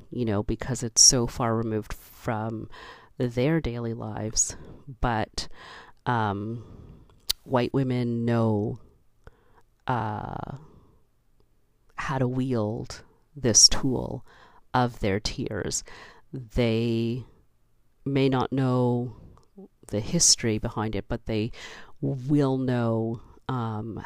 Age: 40-59